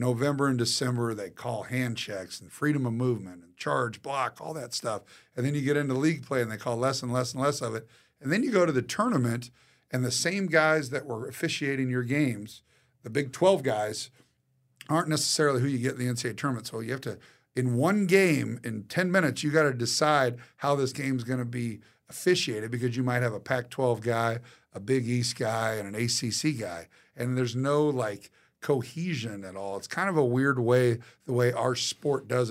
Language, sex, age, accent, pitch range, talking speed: English, male, 50-69, American, 120-145 Hz, 220 wpm